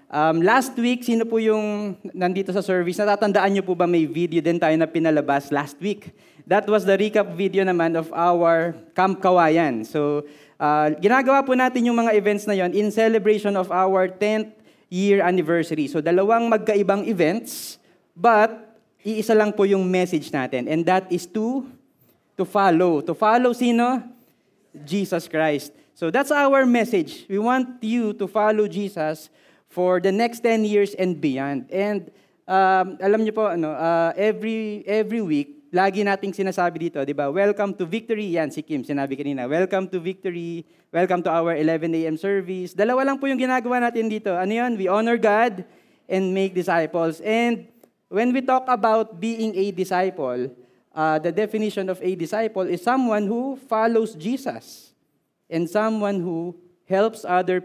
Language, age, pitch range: Filipino, 20-39, 170-220 Hz